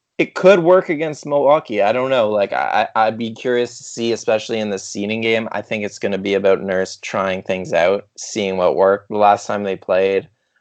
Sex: male